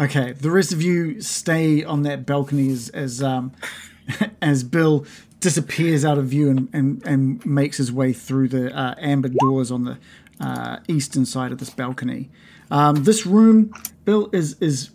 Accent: Australian